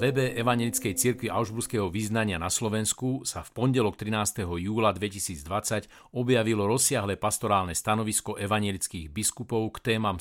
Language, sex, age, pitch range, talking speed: Slovak, male, 50-69, 100-125 Hz, 125 wpm